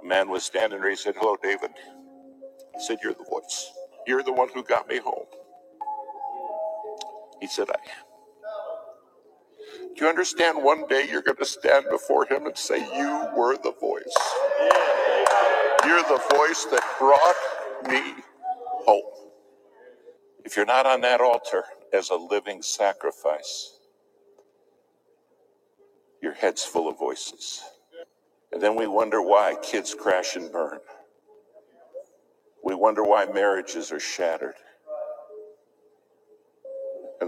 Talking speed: 125 wpm